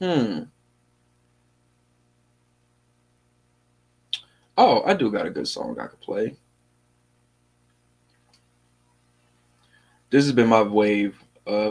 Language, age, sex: English, 20-39, male